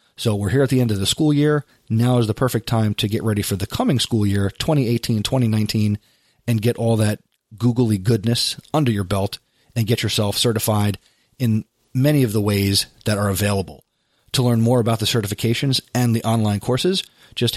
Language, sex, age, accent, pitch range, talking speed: English, male, 30-49, American, 105-130 Hz, 190 wpm